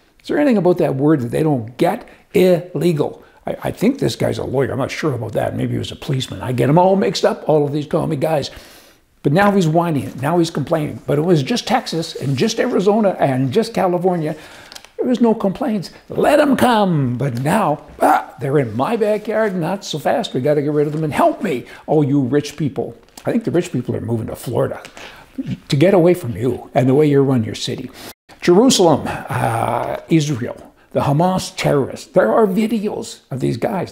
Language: English